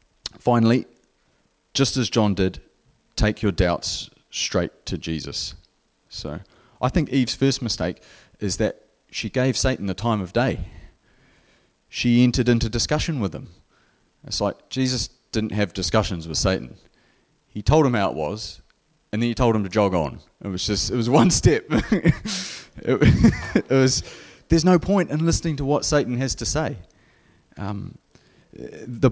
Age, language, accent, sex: 30-49, English, Australian, male